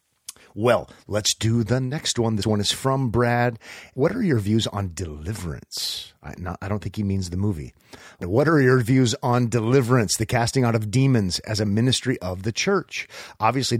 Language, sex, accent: English, male, American